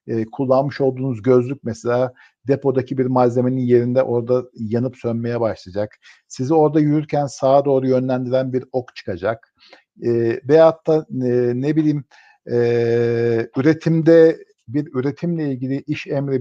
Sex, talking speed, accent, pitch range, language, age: male, 130 wpm, native, 120-155 Hz, Turkish, 50-69